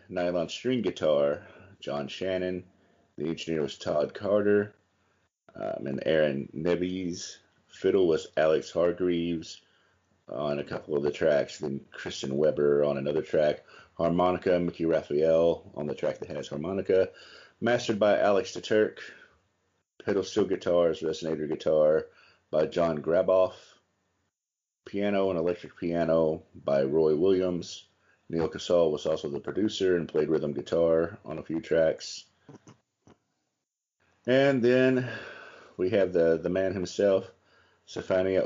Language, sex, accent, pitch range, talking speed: English, male, American, 80-105 Hz, 125 wpm